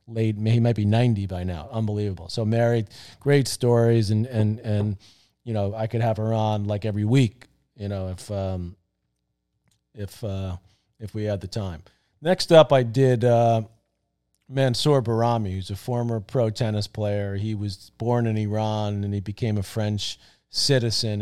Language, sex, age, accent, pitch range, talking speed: English, male, 40-59, American, 100-115 Hz, 170 wpm